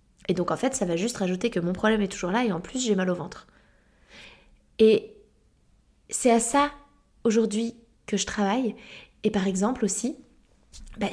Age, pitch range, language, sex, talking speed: 20-39, 195-240 Hz, French, female, 185 wpm